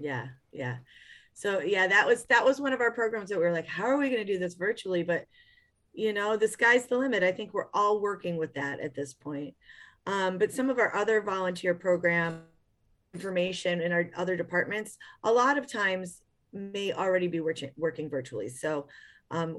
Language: English